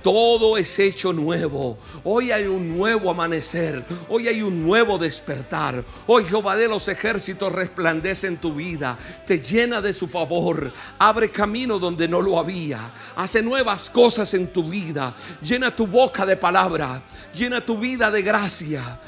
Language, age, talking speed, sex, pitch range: Spanish, 60-79, 155 wpm, male, 175-215 Hz